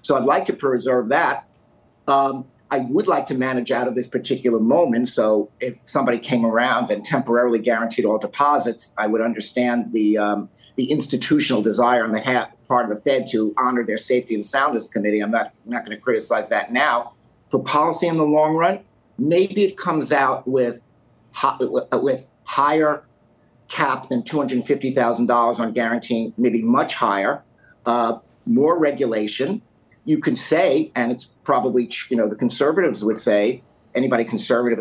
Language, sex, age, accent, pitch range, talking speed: English, male, 50-69, American, 115-140 Hz, 165 wpm